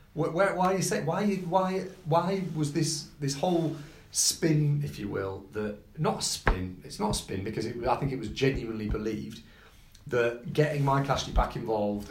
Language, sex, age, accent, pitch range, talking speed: English, male, 30-49, British, 105-140 Hz, 180 wpm